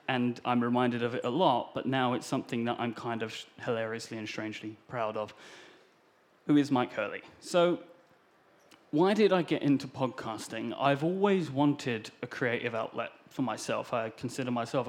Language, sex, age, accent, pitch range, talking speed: English, male, 30-49, British, 115-140 Hz, 170 wpm